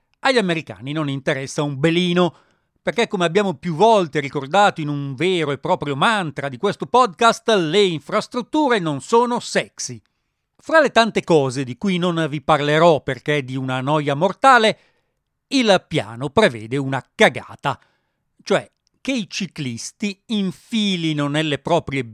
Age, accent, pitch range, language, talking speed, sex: 40-59, native, 140-185 Hz, Italian, 145 wpm, male